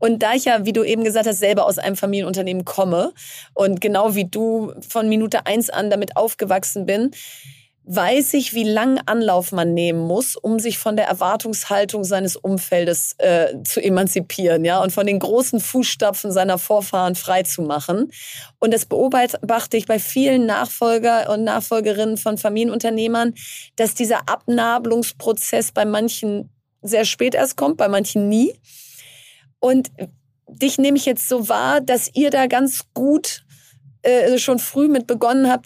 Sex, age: female, 30-49